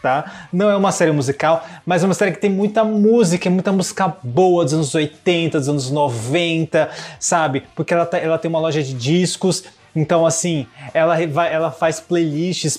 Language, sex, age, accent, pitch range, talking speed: Portuguese, male, 20-39, Brazilian, 150-180 Hz, 180 wpm